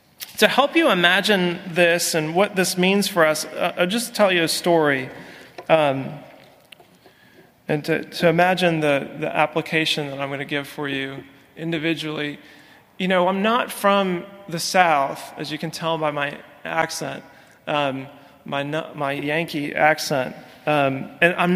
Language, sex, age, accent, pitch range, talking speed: English, male, 30-49, American, 160-200 Hz, 155 wpm